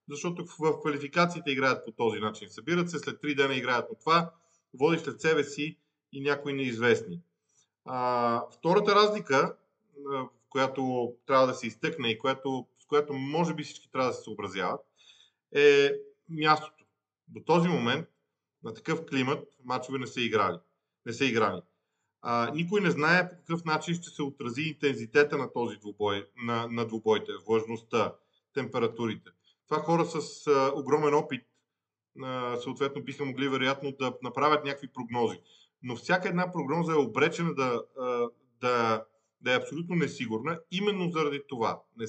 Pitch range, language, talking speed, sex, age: 125-165 Hz, Bulgarian, 155 wpm, male, 40-59